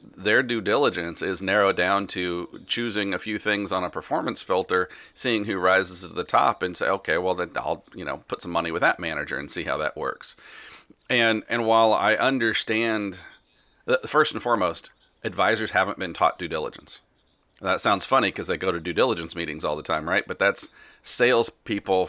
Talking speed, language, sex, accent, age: 195 wpm, English, male, American, 40-59